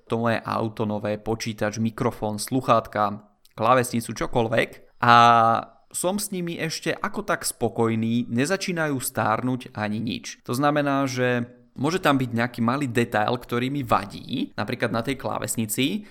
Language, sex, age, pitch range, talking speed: Czech, male, 20-39, 115-135 Hz, 135 wpm